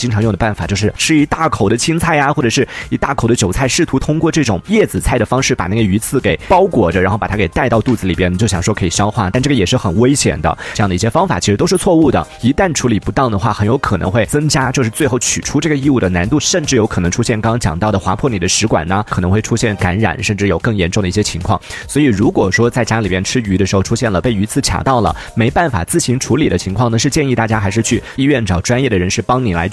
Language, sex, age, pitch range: Chinese, male, 30-49, 100-135 Hz